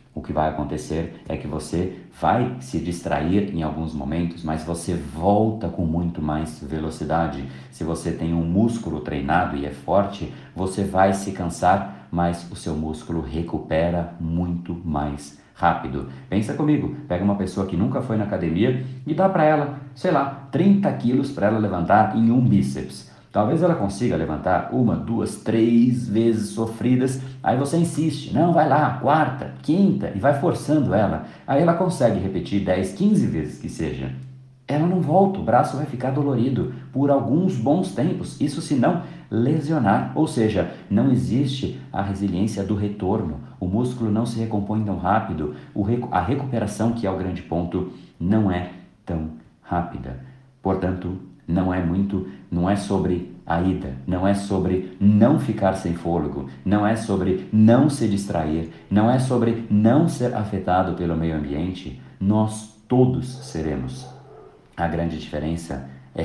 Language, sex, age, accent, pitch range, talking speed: Portuguese, male, 50-69, Brazilian, 80-115 Hz, 160 wpm